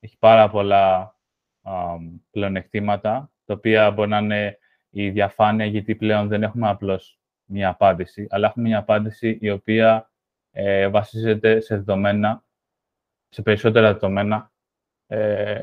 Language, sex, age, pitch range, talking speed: Greek, male, 20-39, 100-115 Hz, 125 wpm